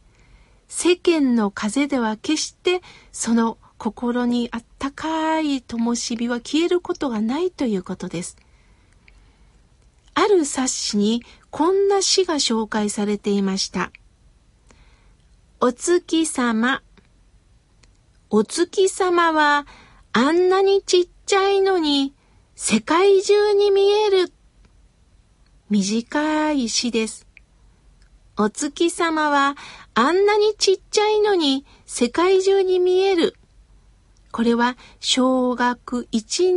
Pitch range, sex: 235-365 Hz, female